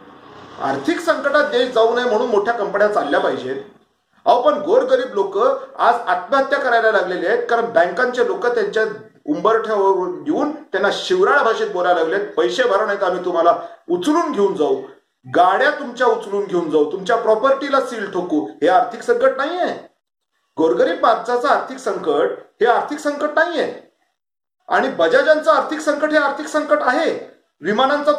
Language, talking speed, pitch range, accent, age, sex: Marathi, 140 wpm, 225-335 Hz, native, 40-59, male